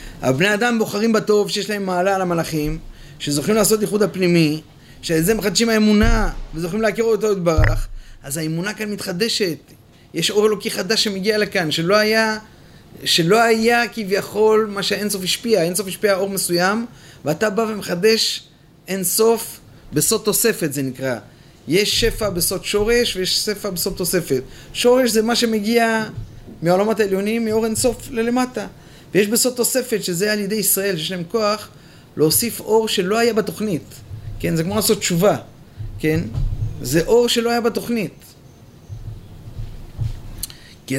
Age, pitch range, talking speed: 30-49, 145-210 Hz, 145 wpm